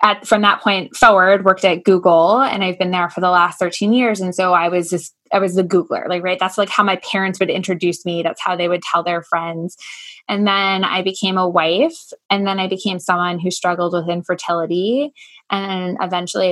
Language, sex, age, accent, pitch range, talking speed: English, female, 20-39, American, 180-215 Hz, 220 wpm